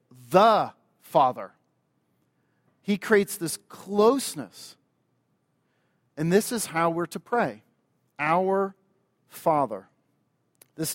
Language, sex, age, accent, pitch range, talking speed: English, male, 40-59, American, 135-175 Hz, 90 wpm